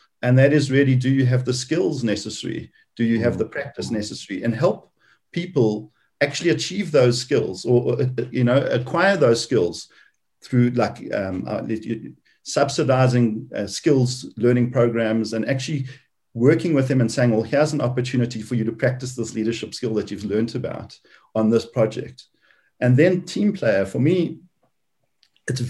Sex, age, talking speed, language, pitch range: male, 50-69, 165 wpm, English, 110-135 Hz